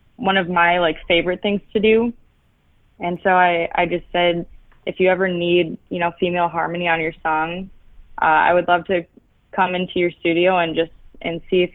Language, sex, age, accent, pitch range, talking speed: English, female, 20-39, American, 175-210 Hz, 200 wpm